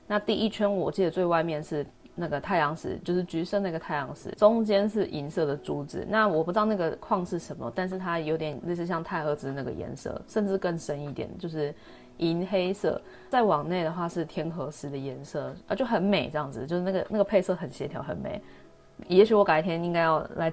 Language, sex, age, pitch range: Chinese, female, 20-39, 150-195 Hz